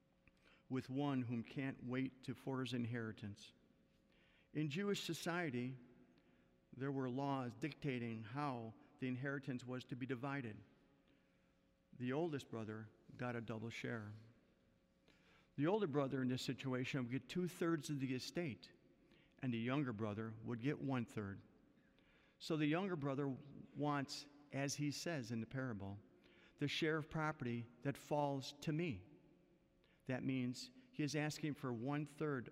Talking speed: 140 wpm